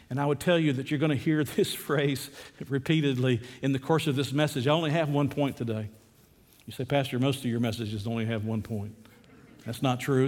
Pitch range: 140-205 Hz